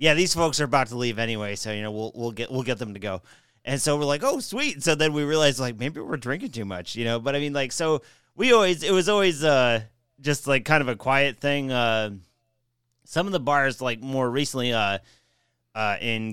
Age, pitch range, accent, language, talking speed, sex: 30-49, 110-140 Hz, American, English, 245 wpm, male